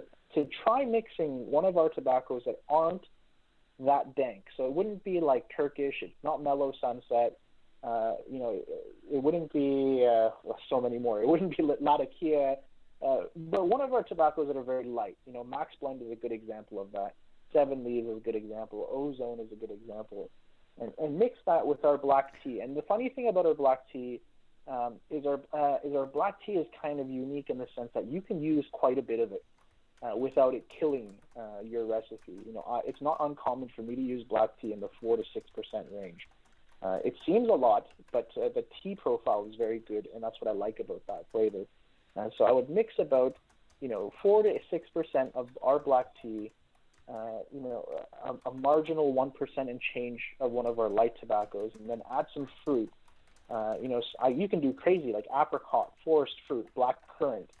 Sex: male